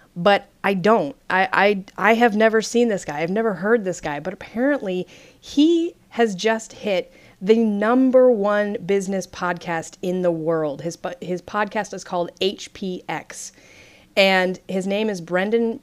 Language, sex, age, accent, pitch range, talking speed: English, female, 30-49, American, 170-220 Hz, 155 wpm